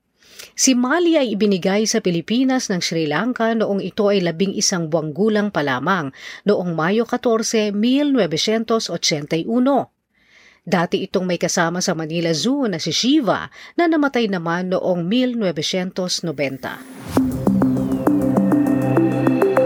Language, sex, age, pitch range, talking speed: Filipino, female, 40-59, 170-245 Hz, 115 wpm